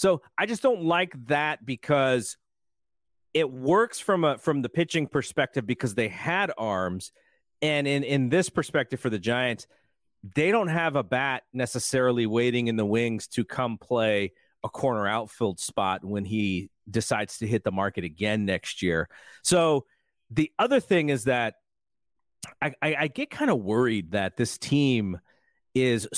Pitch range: 115-160 Hz